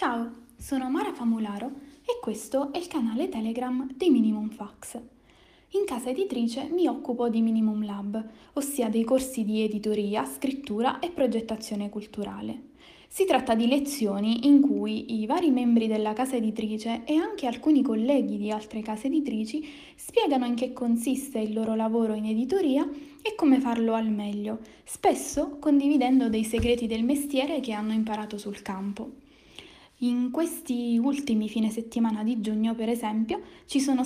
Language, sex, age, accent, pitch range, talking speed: Italian, female, 10-29, native, 220-275 Hz, 150 wpm